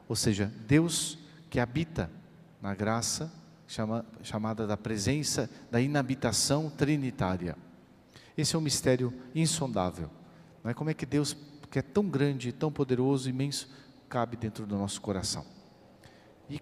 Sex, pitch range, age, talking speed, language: male, 115-145 Hz, 40-59, 135 wpm, Portuguese